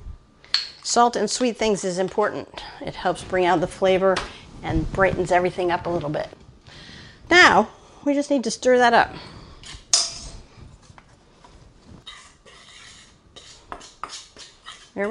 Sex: female